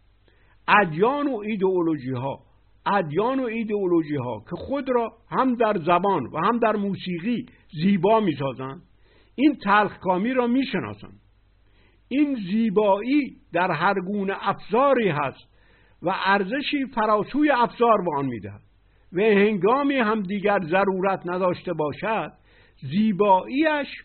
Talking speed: 110 wpm